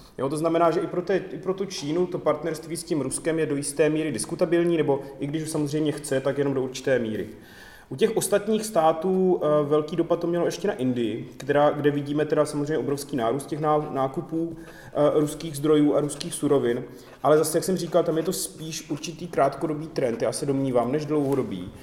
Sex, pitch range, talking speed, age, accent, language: male, 125-150 Hz, 205 wpm, 30-49, native, Czech